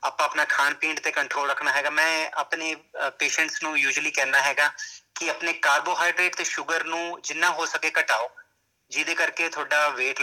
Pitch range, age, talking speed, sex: 145-165 Hz, 30-49, 175 wpm, male